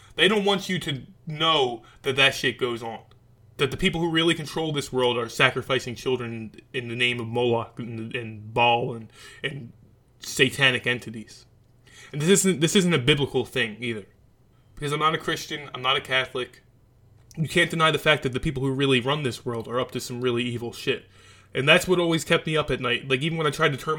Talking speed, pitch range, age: 220 wpm, 125-165 Hz, 20-39